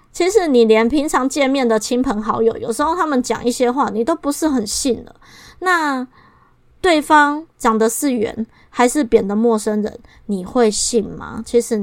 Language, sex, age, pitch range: Chinese, female, 20-39, 225-290 Hz